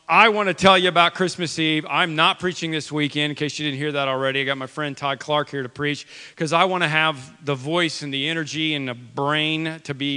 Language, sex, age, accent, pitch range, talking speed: English, male, 40-59, American, 145-180 Hz, 260 wpm